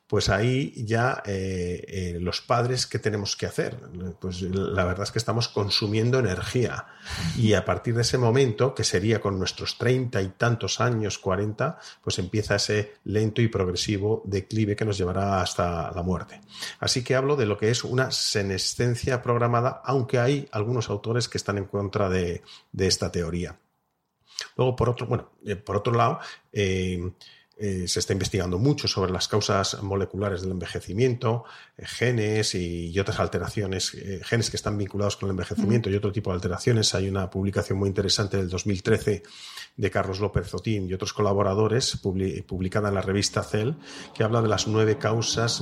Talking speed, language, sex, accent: 175 wpm, Spanish, male, Spanish